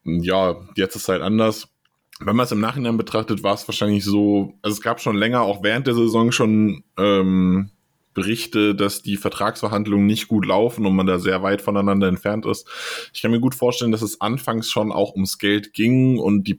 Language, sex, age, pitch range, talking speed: German, male, 20-39, 95-110 Hz, 205 wpm